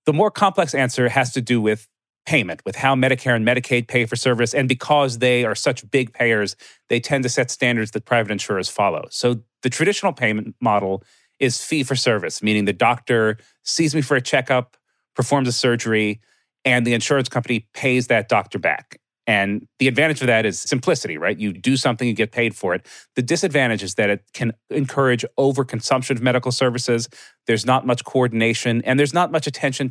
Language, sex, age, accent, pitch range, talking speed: English, male, 40-59, American, 115-135 Hz, 190 wpm